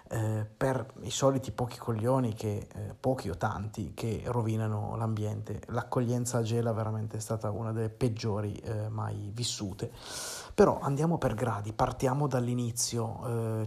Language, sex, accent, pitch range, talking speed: Italian, male, native, 110-125 Hz, 145 wpm